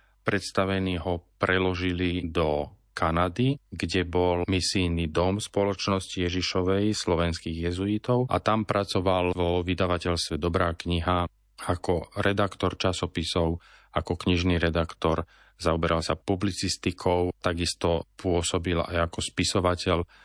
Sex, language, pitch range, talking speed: male, Slovak, 85-95 Hz, 100 wpm